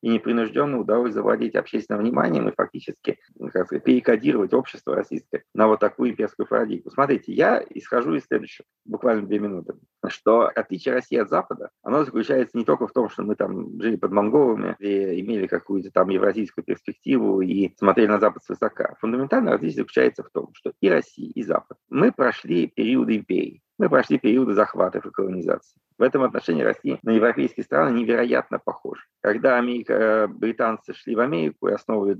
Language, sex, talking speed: Russian, male, 170 wpm